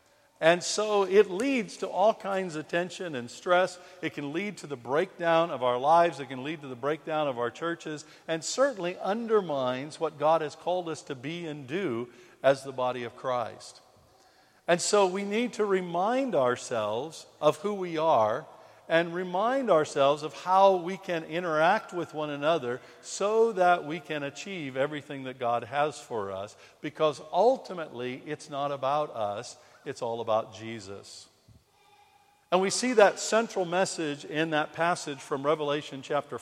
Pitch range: 145-190 Hz